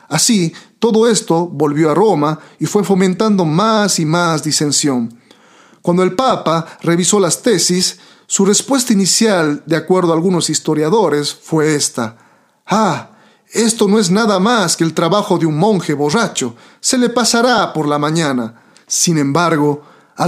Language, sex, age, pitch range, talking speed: Spanish, male, 40-59, 145-195 Hz, 150 wpm